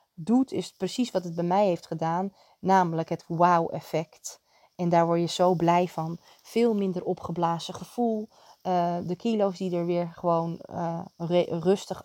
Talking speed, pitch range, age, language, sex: 160 wpm, 170-195 Hz, 20-39, Dutch, female